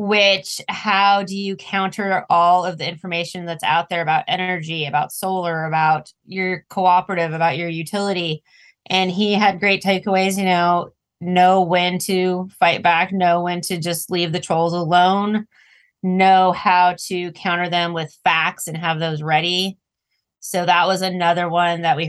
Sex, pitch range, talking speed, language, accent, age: female, 175-195 Hz, 165 wpm, English, American, 20-39